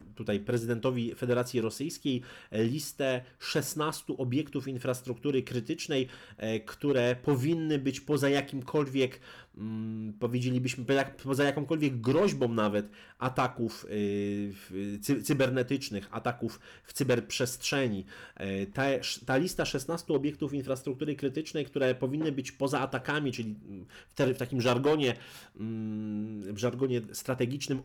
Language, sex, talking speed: Polish, male, 95 wpm